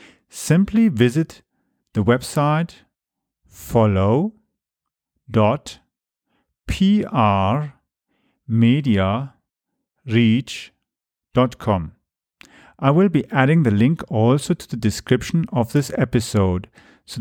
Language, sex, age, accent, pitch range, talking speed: English, male, 40-59, German, 110-150 Hz, 65 wpm